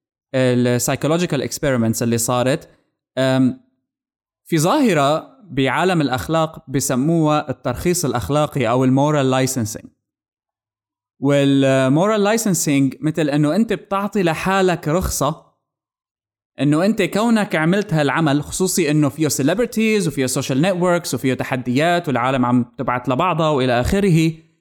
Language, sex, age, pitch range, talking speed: Arabic, male, 20-39, 130-185 Hz, 100 wpm